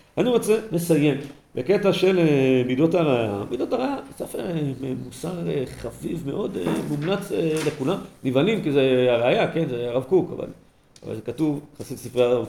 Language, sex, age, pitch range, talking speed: Hebrew, male, 50-69, 120-175 Hz, 145 wpm